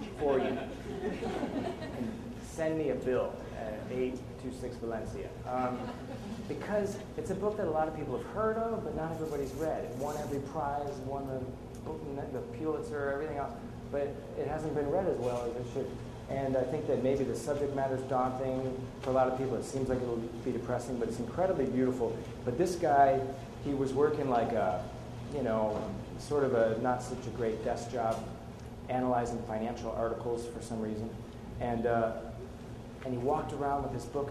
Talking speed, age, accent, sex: 185 wpm, 30-49, American, male